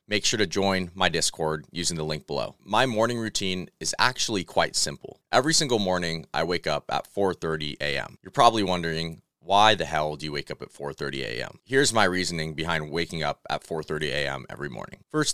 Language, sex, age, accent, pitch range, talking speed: English, male, 30-49, American, 80-95 Hz, 200 wpm